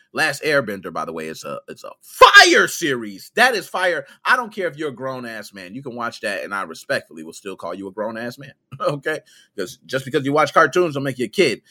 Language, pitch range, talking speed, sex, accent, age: English, 135-185 Hz, 255 wpm, male, American, 30-49